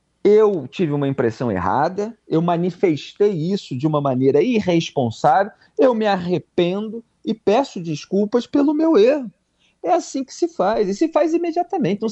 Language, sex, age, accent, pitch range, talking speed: Portuguese, male, 40-59, Brazilian, 130-190 Hz, 155 wpm